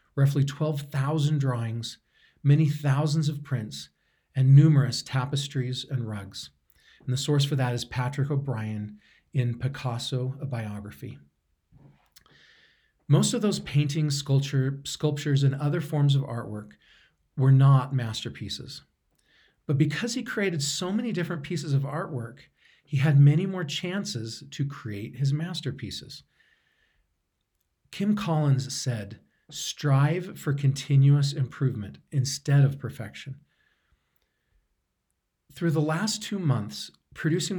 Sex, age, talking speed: male, 40-59, 115 wpm